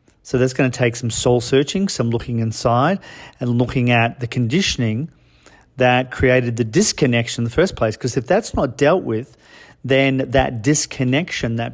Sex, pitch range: male, 115-135 Hz